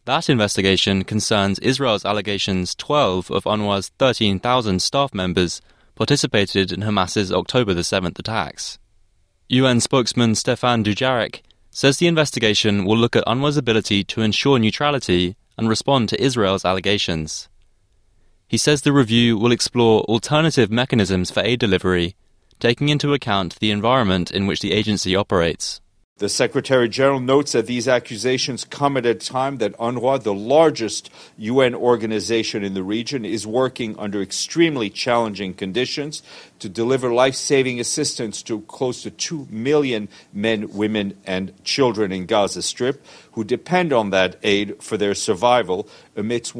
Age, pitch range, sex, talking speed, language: 20-39, 100-130 Hz, male, 140 wpm, English